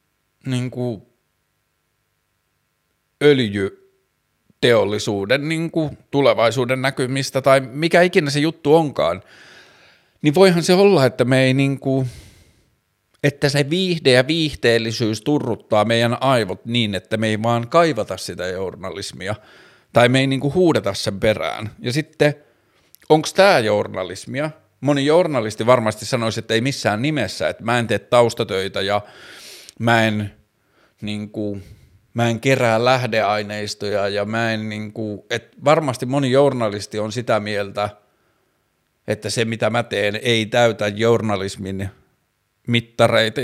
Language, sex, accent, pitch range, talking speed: Finnish, male, native, 105-130 Hz, 120 wpm